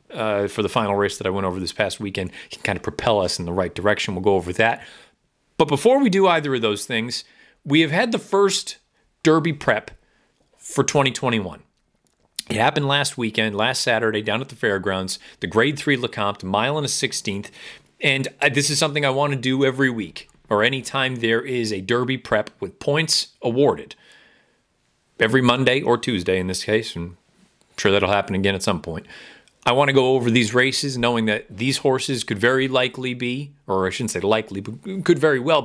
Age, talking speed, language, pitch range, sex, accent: 40-59, 200 wpm, English, 105-145 Hz, male, American